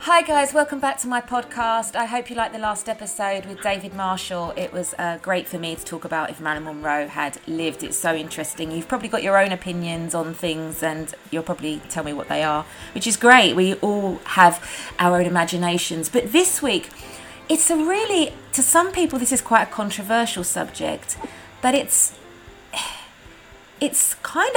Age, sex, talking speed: 30-49, female, 190 wpm